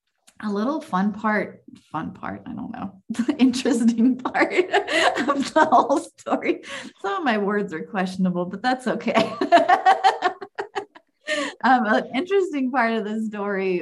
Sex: female